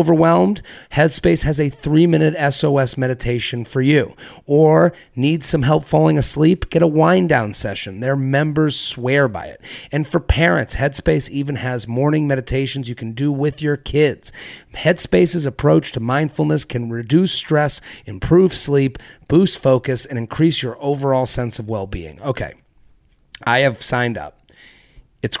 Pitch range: 125-160 Hz